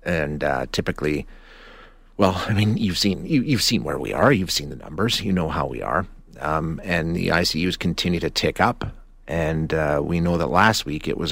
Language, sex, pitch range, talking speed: English, male, 85-100 Hz, 210 wpm